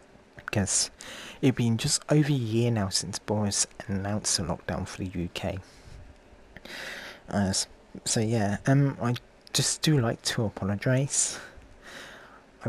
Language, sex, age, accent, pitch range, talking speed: English, male, 20-39, British, 100-130 Hz, 130 wpm